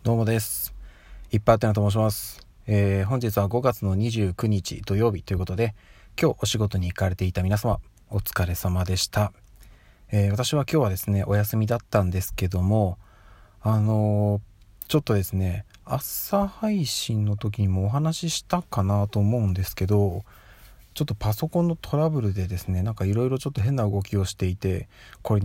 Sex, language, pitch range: male, Japanese, 95-115 Hz